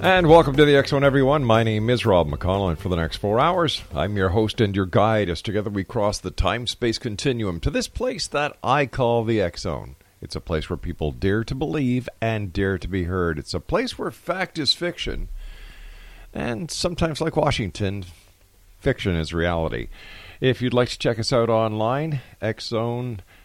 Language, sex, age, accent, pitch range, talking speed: English, male, 50-69, American, 90-120 Hz, 190 wpm